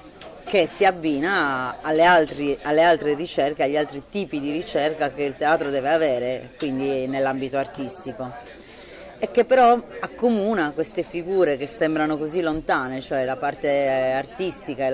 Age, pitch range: 30-49, 140-180 Hz